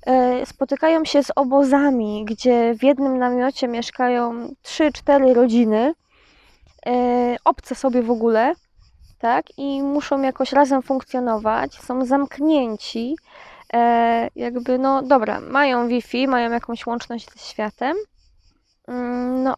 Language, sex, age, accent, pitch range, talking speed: Polish, female, 20-39, native, 245-285 Hz, 105 wpm